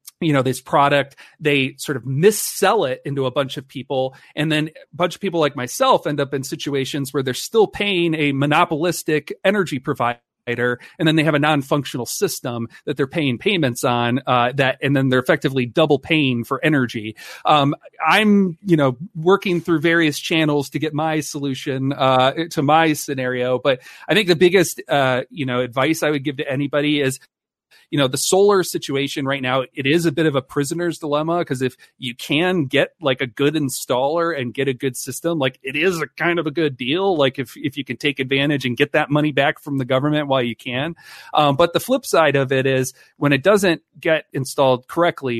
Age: 40-59